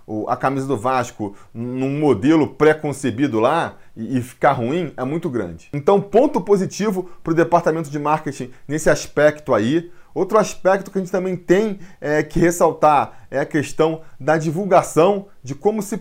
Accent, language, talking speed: Brazilian, Portuguese, 155 wpm